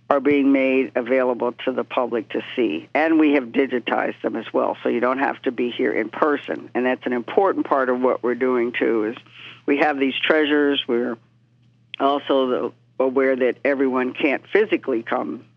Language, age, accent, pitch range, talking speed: English, 50-69, American, 125-145 Hz, 185 wpm